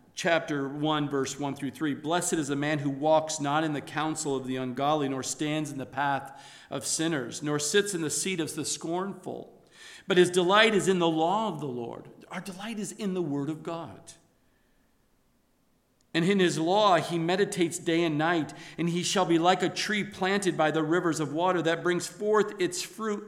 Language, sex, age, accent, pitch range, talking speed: English, male, 50-69, American, 155-200 Hz, 205 wpm